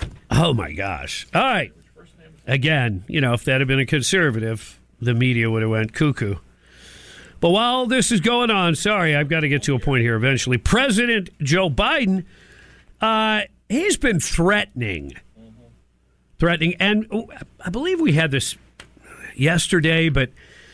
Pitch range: 125-195 Hz